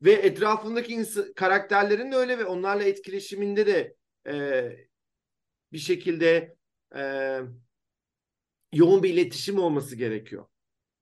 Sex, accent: male, native